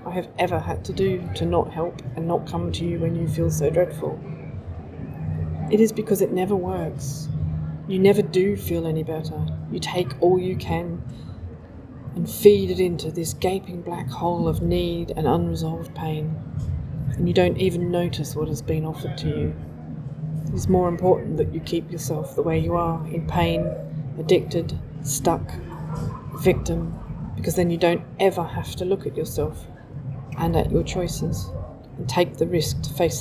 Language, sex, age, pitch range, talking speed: English, female, 30-49, 135-170 Hz, 175 wpm